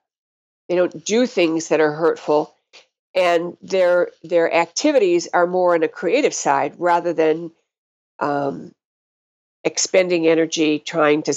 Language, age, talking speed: English, 50-69, 125 wpm